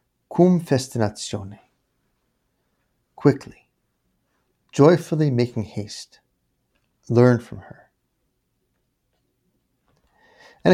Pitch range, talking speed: 115-140 Hz, 55 wpm